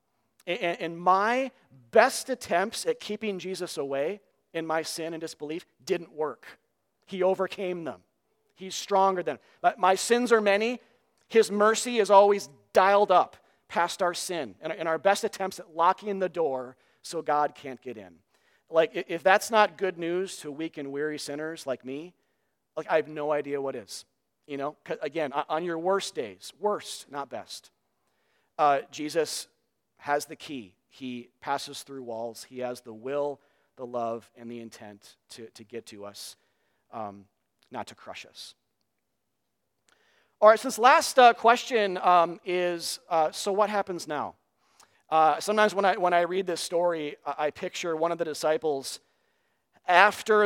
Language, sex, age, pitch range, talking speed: English, male, 40-59, 145-195 Hz, 160 wpm